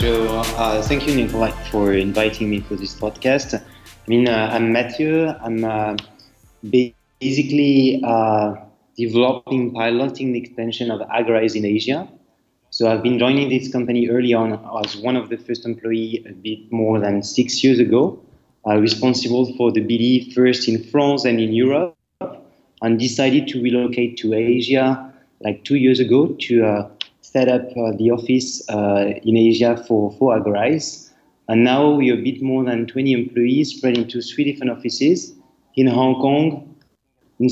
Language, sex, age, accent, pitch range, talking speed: English, male, 30-49, French, 115-130 Hz, 165 wpm